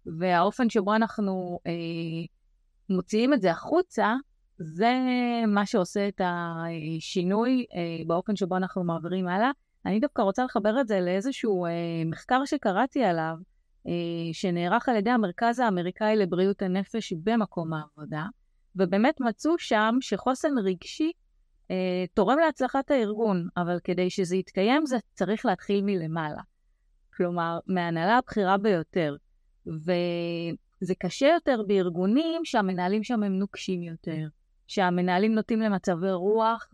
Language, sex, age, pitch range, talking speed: Hebrew, female, 30-49, 180-230 Hz, 120 wpm